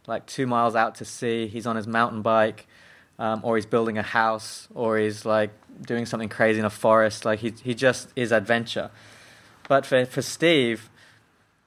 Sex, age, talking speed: male, 20-39, 185 wpm